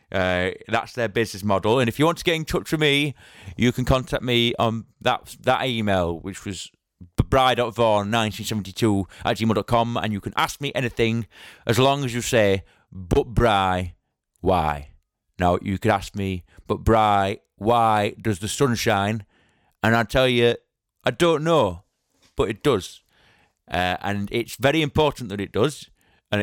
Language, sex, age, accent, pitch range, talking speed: English, male, 30-49, British, 105-135 Hz, 165 wpm